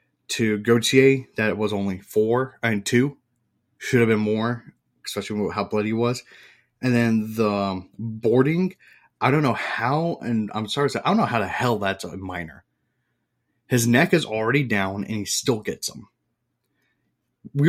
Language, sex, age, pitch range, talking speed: English, male, 30-49, 105-125 Hz, 185 wpm